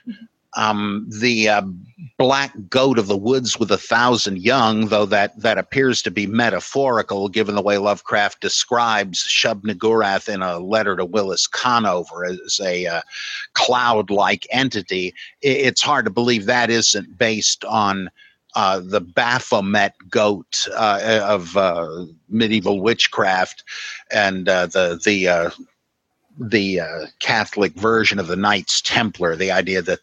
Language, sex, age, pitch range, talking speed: English, male, 50-69, 95-115 Hz, 140 wpm